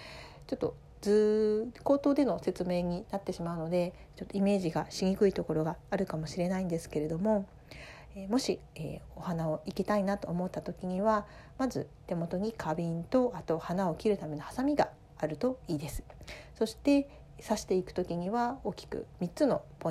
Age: 40-59